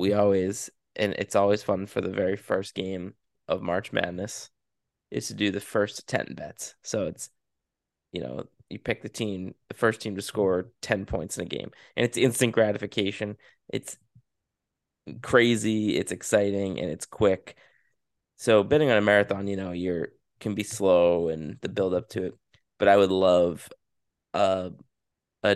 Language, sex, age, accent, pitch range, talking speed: English, male, 20-39, American, 95-105 Hz, 170 wpm